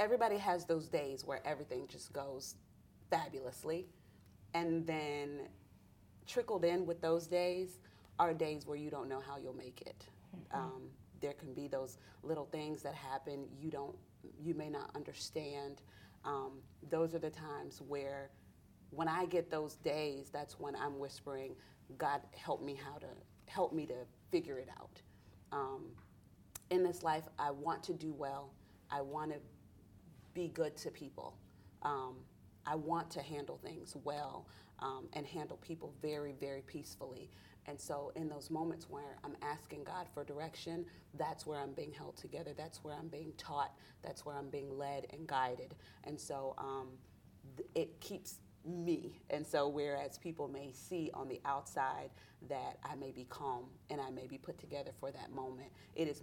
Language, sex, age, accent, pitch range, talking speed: English, female, 30-49, American, 135-160 Hz, 170 wpm